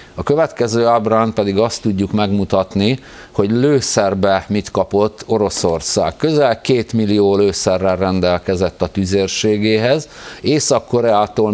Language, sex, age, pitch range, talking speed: Hungarian, male, 50-69, 95-115 Hz, 105 wpm